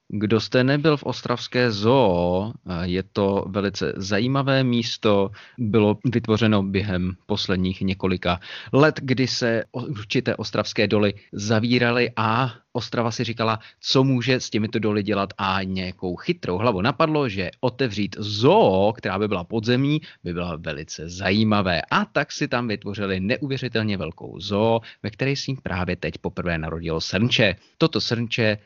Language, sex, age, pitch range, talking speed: Czech, male, 30-49, 90-125 Hz, 140 wpm